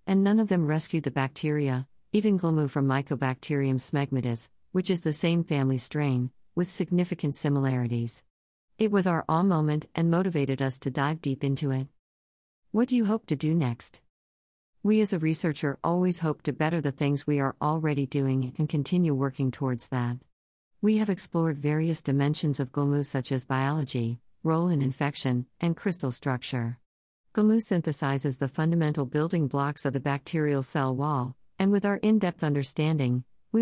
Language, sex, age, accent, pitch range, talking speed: English, female, 50-69, American, 130-165 Hz, 165 wpm